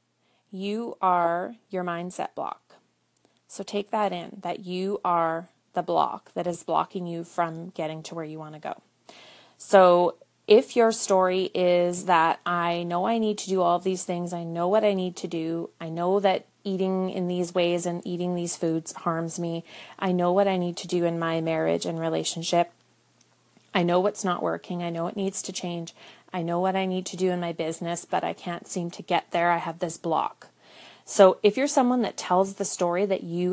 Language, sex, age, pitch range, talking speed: English, female, 30-49, 170-190 Hz, 210 wpm